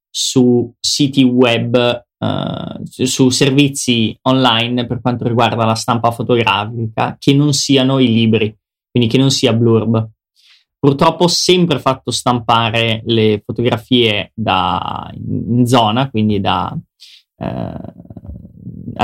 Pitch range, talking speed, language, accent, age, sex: 110-125 Hz, 110 wpm, Italian, native, 20-39, male